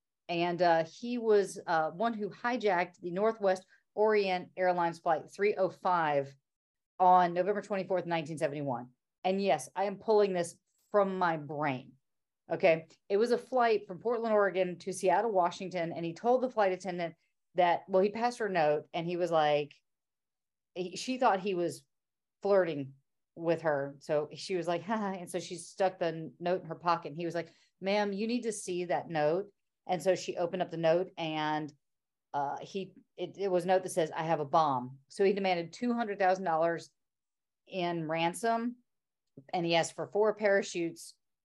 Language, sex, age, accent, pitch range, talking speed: English, female, 40-59, American, 165-195 Hz, 175 wpm